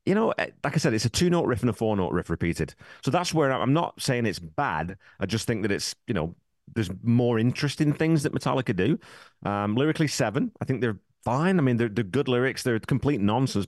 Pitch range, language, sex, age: 95-125 Hz, English, male, 30-49